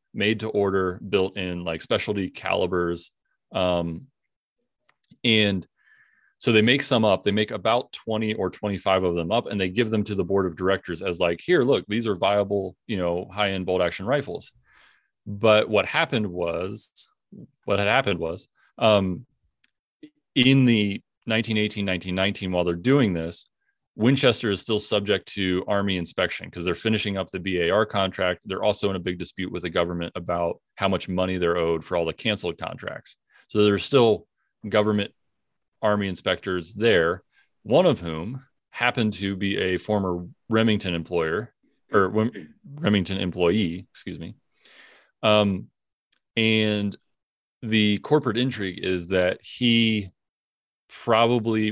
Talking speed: 150 wpm